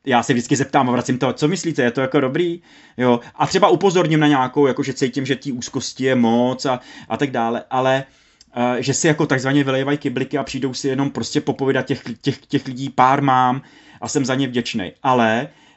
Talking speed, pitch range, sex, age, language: 210 wpm, 120-140 Hz, male, 30-49, Czech